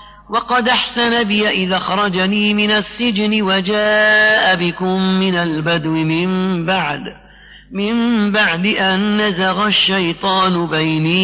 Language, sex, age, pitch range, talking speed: Arabic, male, 40-59, 175-210 Hz, 100 wpm